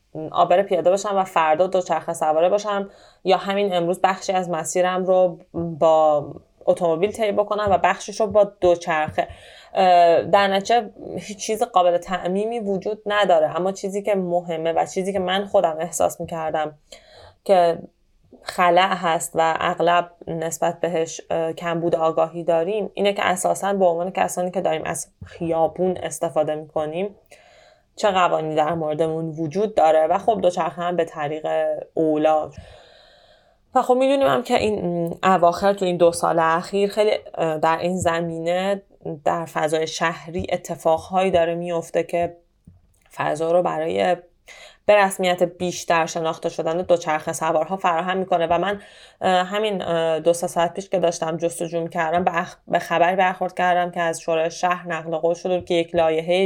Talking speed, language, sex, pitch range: 145 wpm, Persian, female, 165-190 Hz